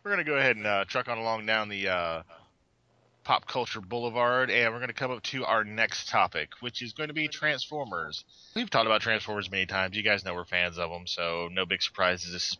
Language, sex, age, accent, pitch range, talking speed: English, male, 20-39, American, 100-130 Hz, 245 wpm